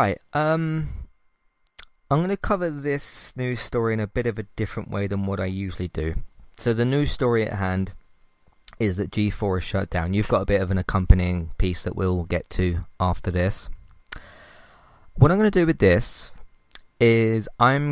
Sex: male